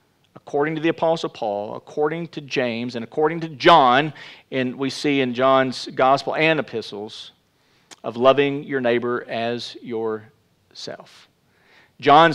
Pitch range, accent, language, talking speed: 125-150 Hz, American, English, 130 wpm